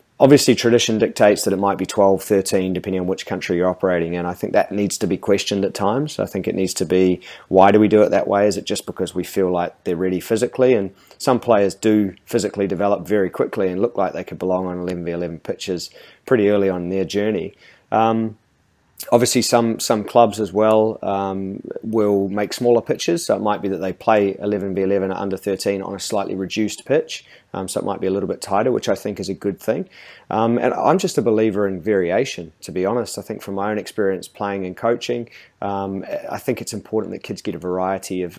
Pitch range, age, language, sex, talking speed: 90-105 Hz, 30-49, English, male, 235 wpm